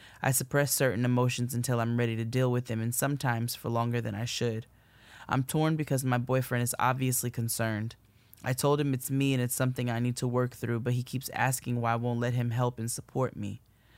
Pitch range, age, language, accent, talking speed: 115-130 Hz, 10-29, English, American, 225 wpm